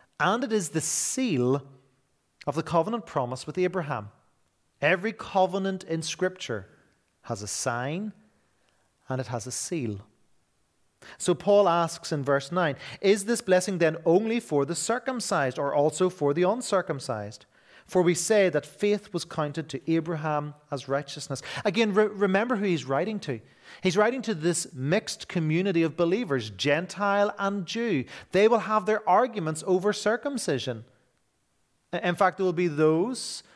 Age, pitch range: 30-49, 140-195 Hz